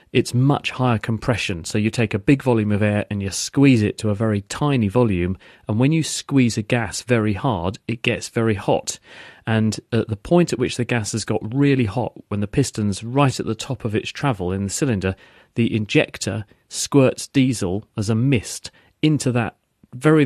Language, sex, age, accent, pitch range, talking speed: English, male, 40-59, British, 105-125 Hz, 200 wpm